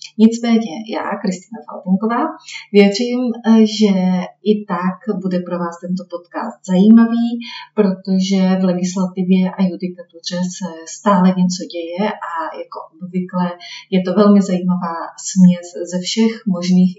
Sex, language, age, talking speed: female, Czech, 30-49, 120 wpm